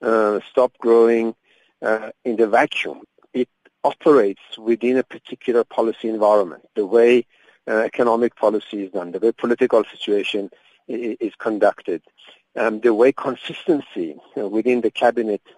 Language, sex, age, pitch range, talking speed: English, male, 50-69, 110-135 Hz, 140 wpm